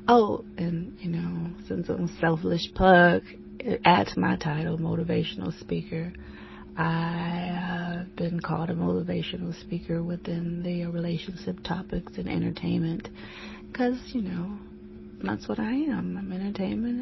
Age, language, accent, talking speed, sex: 30-49, English, American, 125 wpm, female